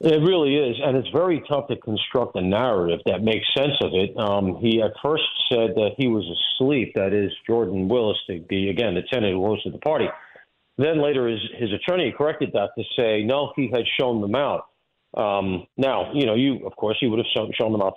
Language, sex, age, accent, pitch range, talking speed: English, male, 50-69, American, 105-135 Hz, 215 wpm